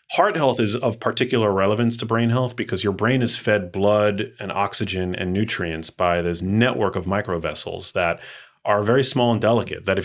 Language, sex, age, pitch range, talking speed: English, male, 30-49, 95-115 Hz, 190 wpm